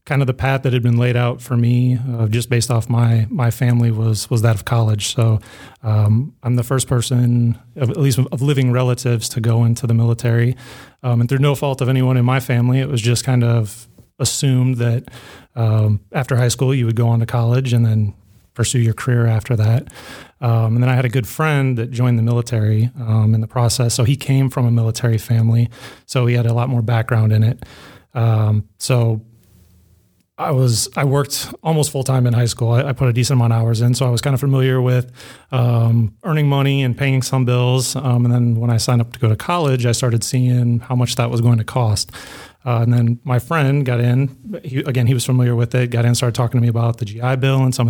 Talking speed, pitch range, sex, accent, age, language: 235 wpm, 115-130 Hz, male, American, 30-49, English